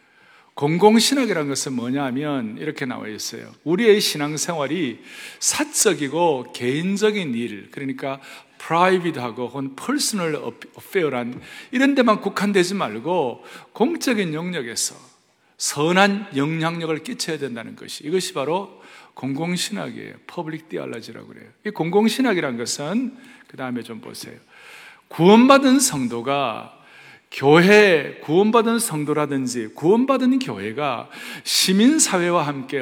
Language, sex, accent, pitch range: Korean, male, native, 145-210 Hz